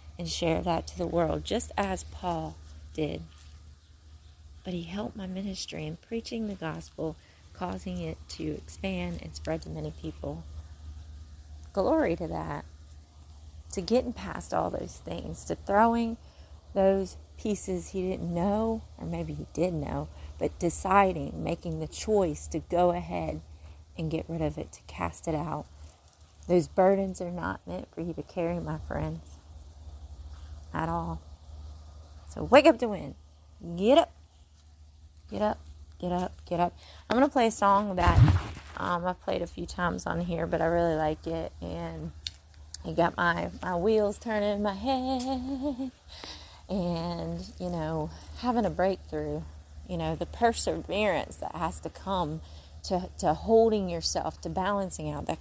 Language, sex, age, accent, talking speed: English, female, 30-49, American, 155 wpm